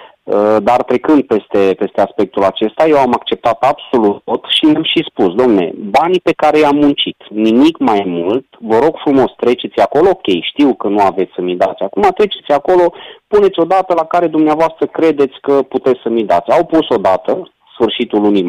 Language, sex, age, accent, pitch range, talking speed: Romanian, male, 30-49, native, 125-160 Hz, 180 wpm